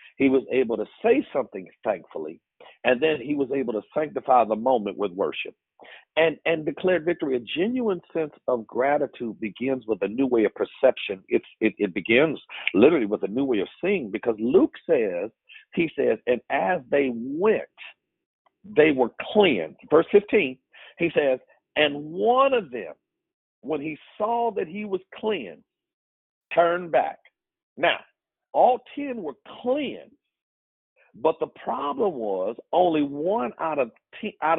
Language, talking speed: English, 155 wpm